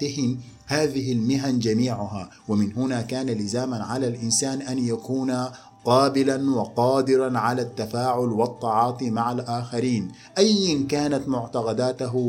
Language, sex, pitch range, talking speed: Arabic, male, 120-135 Hz, 105 wpm